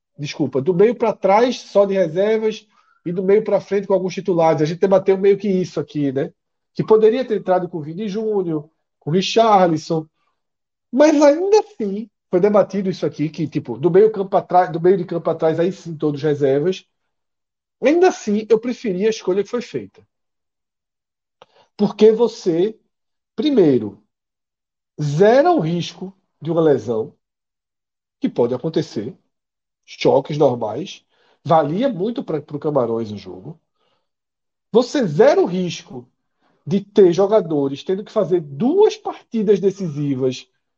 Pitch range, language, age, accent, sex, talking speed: 155-220 Hz, Portuguese, 50-69, Brazilian, male, 150 wpm